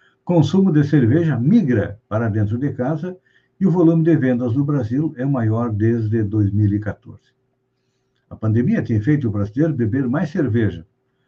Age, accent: 60-79, Brazilian